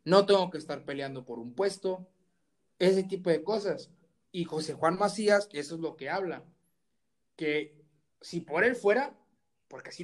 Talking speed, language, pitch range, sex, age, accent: 165 wpm, Spanish, 155-195 Hz, male, 30-49, Mexican